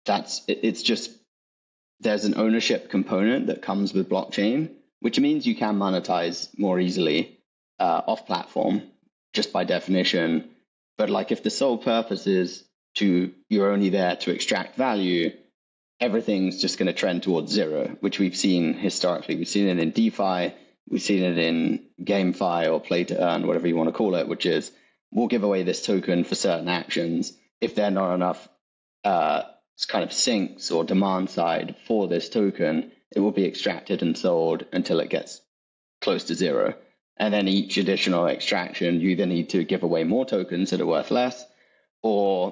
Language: English